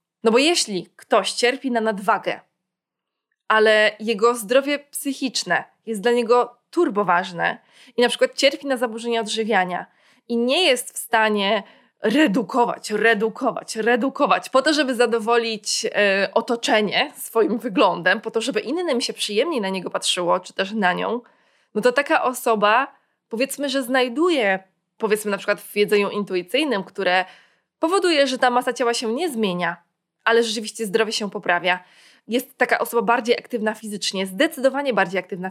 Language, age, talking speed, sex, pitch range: Polish, 20-39, 145 wpm, female, 205-250 Hz